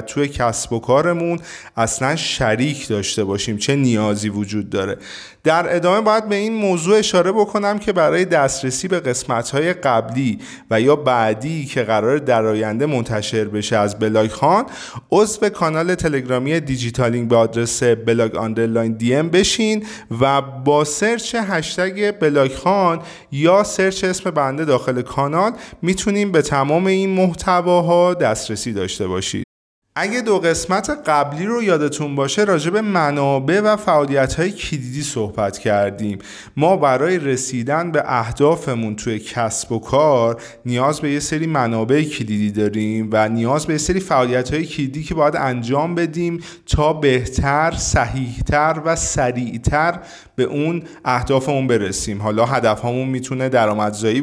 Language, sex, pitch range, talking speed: Persian, male, 115-175 Hz, 140 wpm